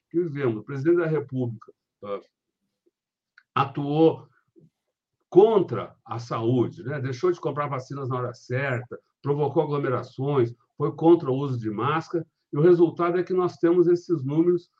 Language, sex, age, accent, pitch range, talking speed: Portuguese, male, 60-79, Brazilian, 125-165 Hz, 135 wpm